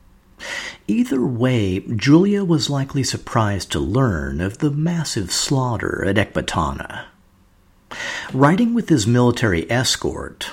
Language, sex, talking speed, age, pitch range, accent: English, male, 110 wpm, 50-69, 100-150 Hz, American